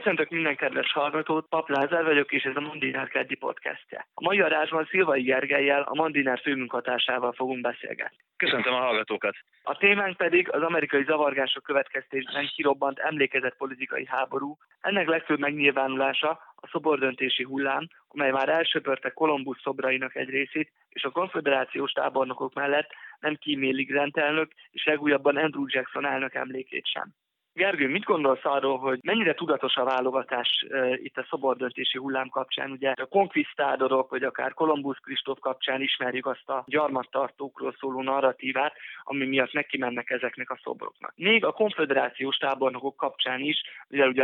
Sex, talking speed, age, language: male, 145 wpm, 20-39, Hungarian